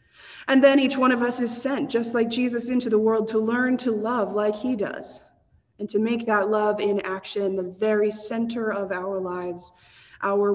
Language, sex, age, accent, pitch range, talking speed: English, female, 20-39, American, 190-230 Hz, 200 wpm